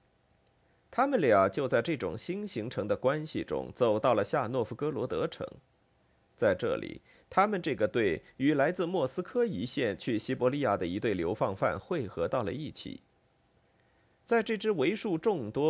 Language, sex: Chinese, male